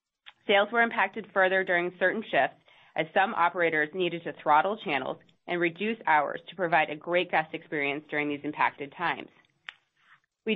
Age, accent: 30-49, American